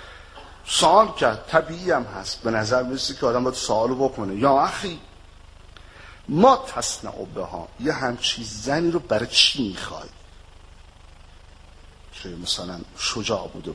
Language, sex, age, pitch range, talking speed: Arabic, male, 50-69, 85-125 Hz, 120 wpm